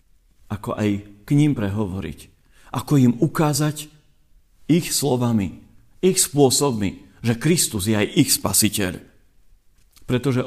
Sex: male